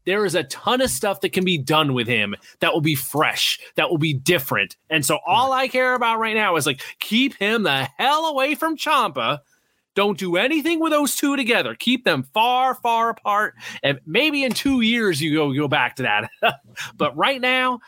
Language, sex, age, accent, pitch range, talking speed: English, male, 30-49, American, 145-220 Hz, 210 wpm